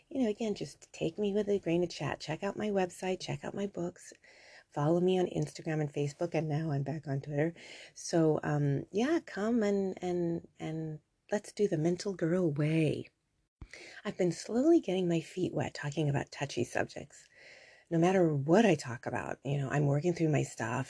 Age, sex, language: 30-49, female, English